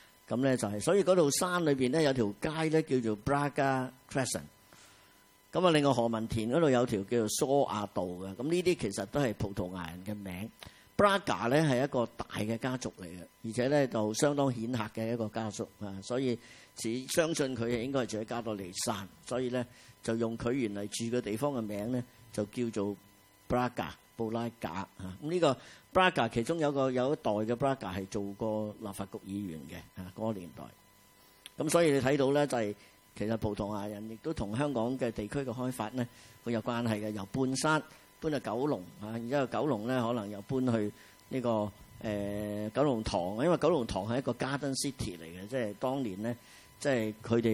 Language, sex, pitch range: Chinese, male, 105-130 Hz